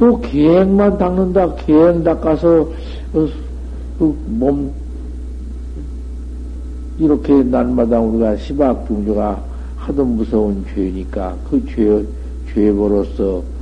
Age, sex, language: 60-79, male, Korean